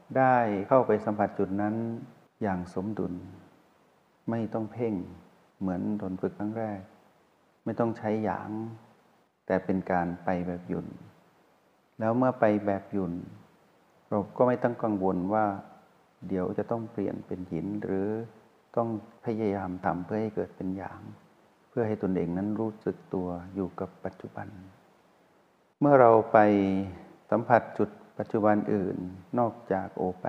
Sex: male